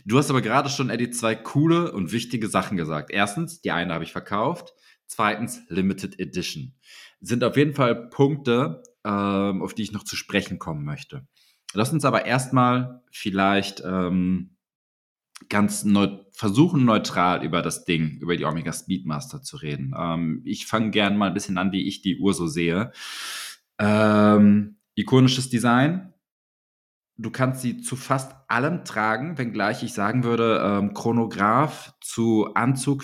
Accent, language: German, German